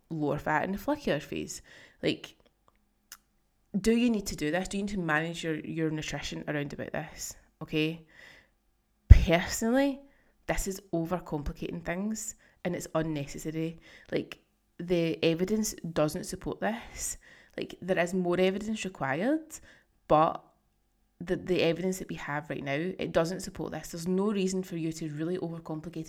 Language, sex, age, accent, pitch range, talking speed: English, female, 20-39, British, 160-200 Hz, 150 wpm